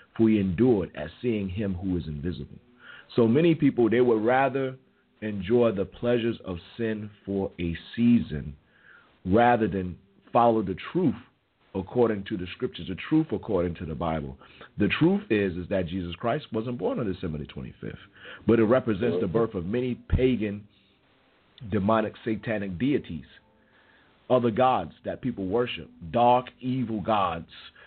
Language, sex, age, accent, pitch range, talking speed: English, male, 40-59, American, 95-125 Hz, 150 wpm